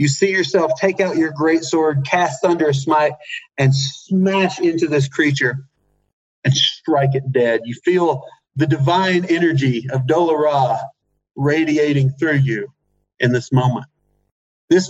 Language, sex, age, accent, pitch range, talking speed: English, male, 40-59, American, 145-190 Hz, 140 wpm